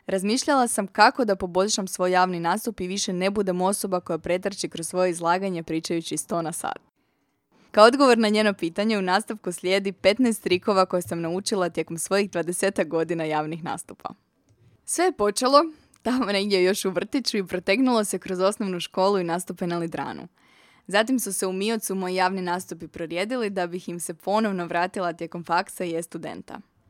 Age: 20-39